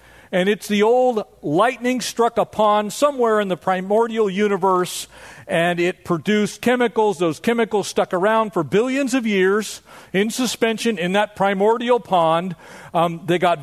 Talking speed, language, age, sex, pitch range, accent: 150 wpm, English, 40-59, male, 175-225 Hz, American